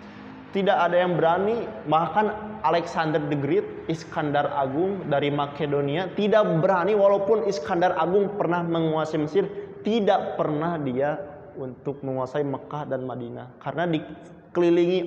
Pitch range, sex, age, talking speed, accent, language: 135-170 Hz, male, 20-39, 120 wpm, native, Indonesian